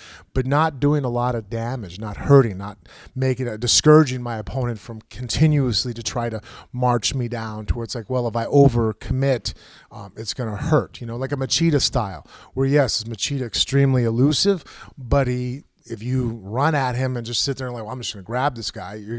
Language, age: English, 30-49